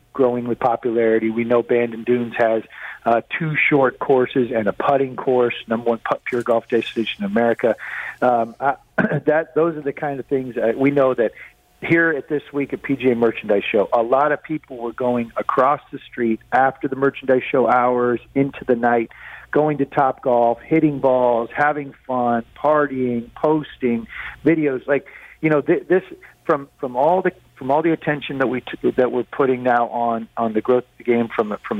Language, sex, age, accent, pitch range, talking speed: English, male, 50-69, American, 115-140 Hz, 190 wpm